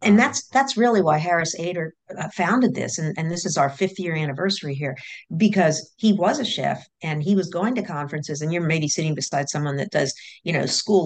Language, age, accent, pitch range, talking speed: English, 50-69, American, 145-190 Hz, 215 wpm